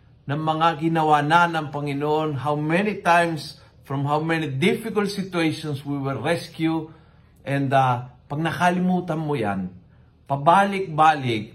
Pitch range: 125-160 Hz